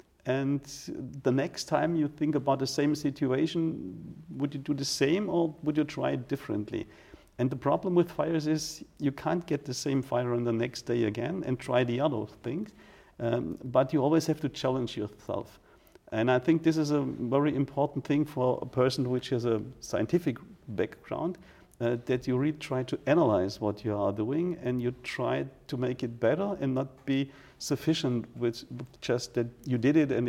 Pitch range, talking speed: 120-140 Hz, 190 wpm